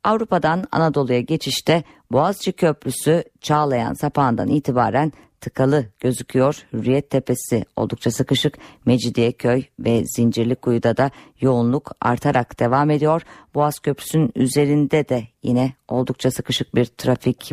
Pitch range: 125-150 Hz